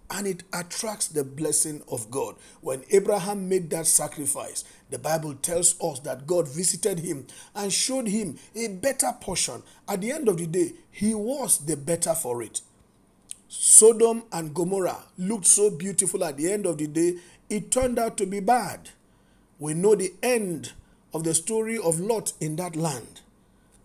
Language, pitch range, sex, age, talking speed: English, 150-200 Hz, male, 50-69, 170 wpm